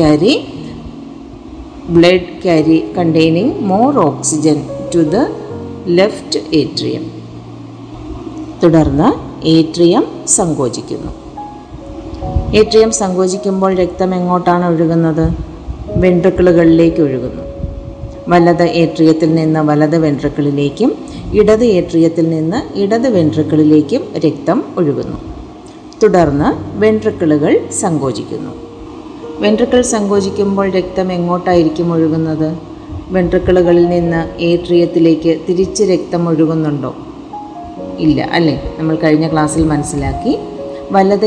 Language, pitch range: Malayalam, 160-185 Hz